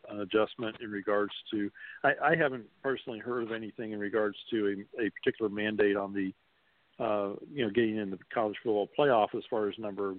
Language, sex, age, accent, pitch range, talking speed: English, male, 50-69, American, 100-110 Hz, 205 wpm